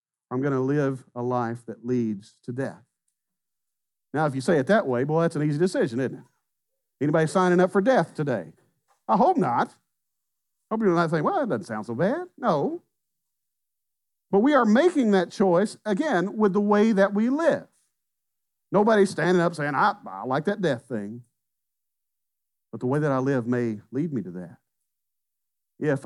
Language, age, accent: English, 50-69, American